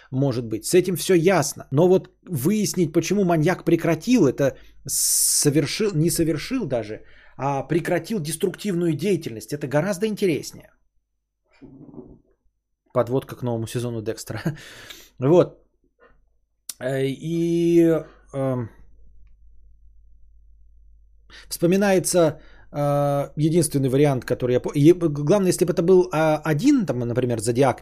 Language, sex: Bulgarian, male